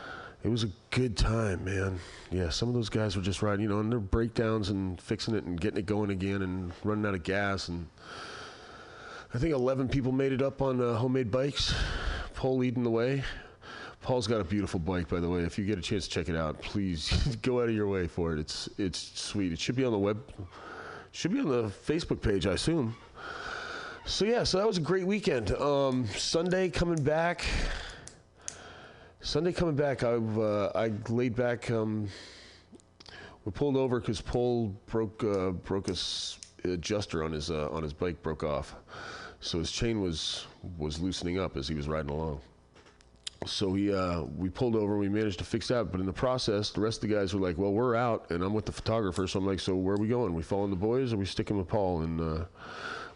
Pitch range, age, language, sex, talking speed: 90-125 Hz, 30-49, English, male, 220 wpm